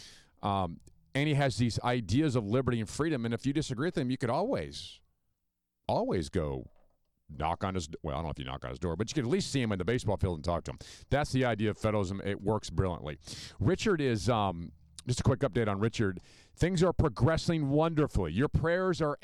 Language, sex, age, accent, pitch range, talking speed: English, male, 50-69, American, 95-130 Hz, 230 wpm